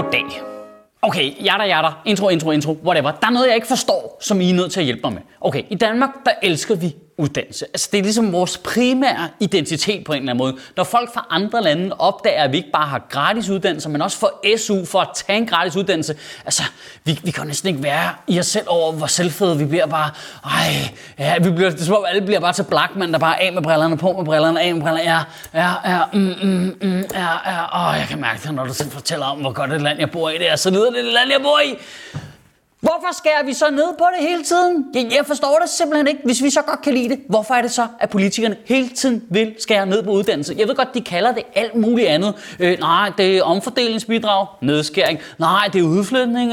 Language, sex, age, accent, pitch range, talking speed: Danish, male, 20-39, native, 170-255 Hz, 245 wpm